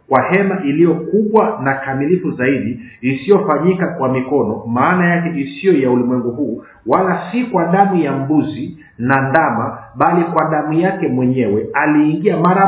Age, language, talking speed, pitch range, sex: 50-69, Swahili, 145 wpm, 130-175 Hz, male